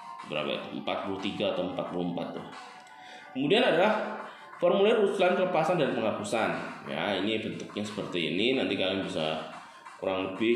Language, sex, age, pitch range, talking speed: Indonesian, male, 20-39, 105-145 Hz, 130 wpm